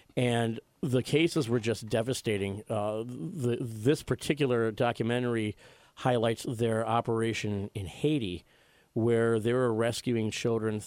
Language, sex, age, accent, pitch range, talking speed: English, male, 40-59, American, 110-135 Hz, 115 wpm